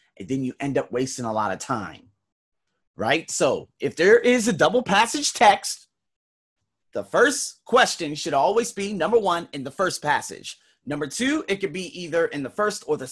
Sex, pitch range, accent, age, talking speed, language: male, 155-235 Hz, American, 30-49, 190 wpm, English